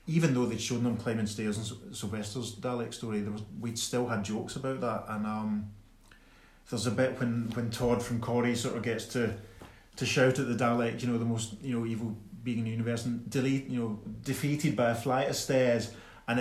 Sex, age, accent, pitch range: male, 30-49, British, 105-120 Hz